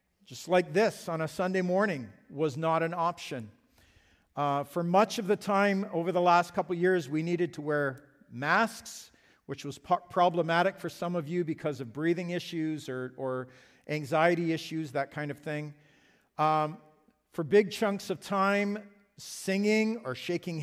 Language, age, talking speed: English, 50-69, 165 wpm